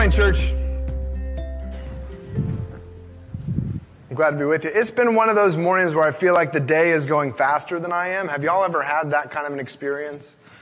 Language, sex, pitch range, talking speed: English, male, 140-180 Hz, 205 wpm